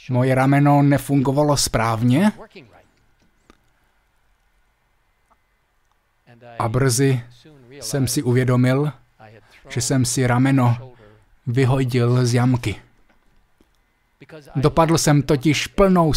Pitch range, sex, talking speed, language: 115-140 Hz, male, 75 wpm, Slovak